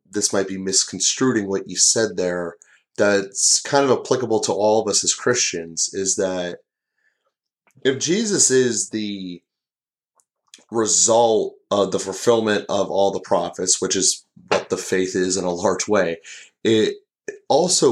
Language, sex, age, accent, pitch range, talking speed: English, male, 30-49, American, 95-110 Hz, 145 wpm